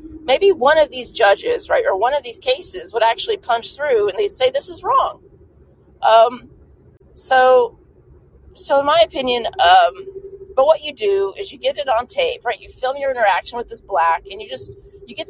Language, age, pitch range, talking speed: English, 30-49, 225-370 Hz, 200 wpm